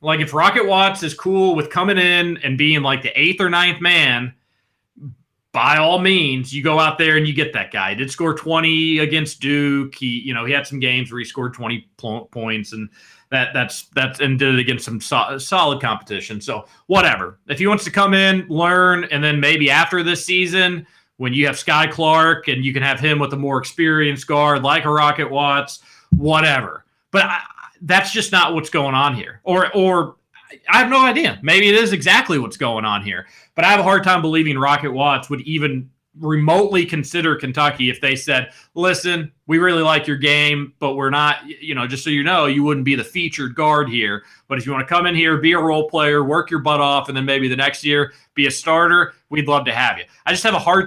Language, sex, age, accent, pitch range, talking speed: English, male, 30-49, American, 135-165 Hz, 225 wpm